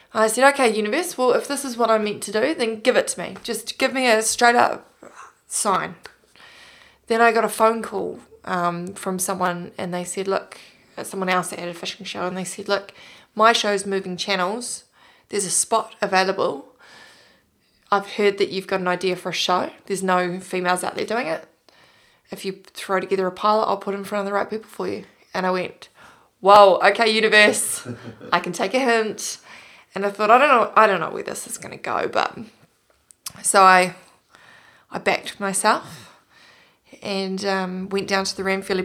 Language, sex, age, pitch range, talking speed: English, female, 20-39, 190-220 Hz, 200 wpm